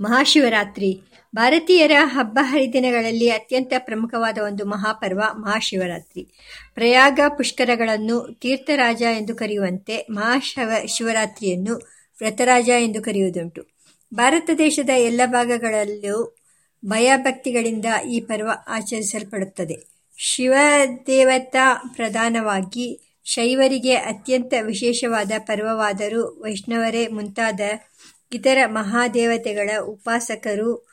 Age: 50-69